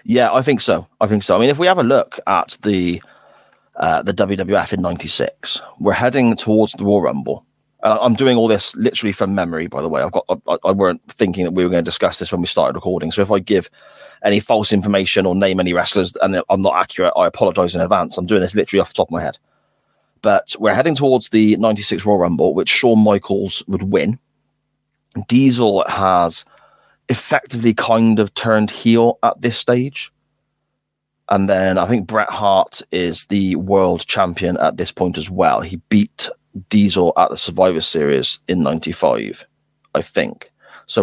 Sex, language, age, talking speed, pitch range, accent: male, English, 30-49, 195 wpm, 90-110 Hz, British